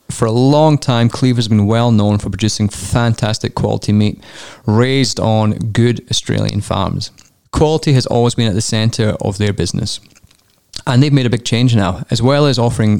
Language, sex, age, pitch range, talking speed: English, male, 20-39, 105-125 Hz, 180 wpm